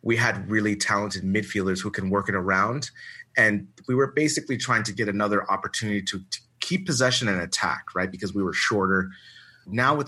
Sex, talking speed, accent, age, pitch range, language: male, 190 wpm, American, 30-49, 95-115 Hz, English